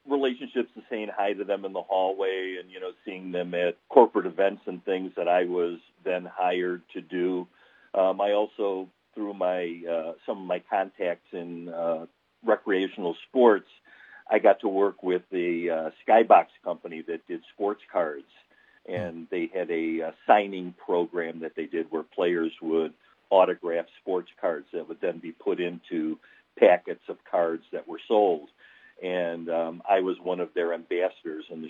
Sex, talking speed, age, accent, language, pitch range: male, 170 wpm, 50-69, American, English, 85-100 Hz